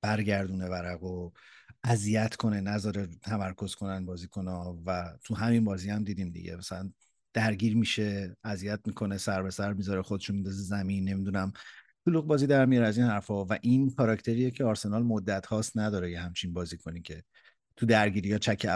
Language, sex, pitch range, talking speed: Persian, male, 95-110 Hz, 175 wpm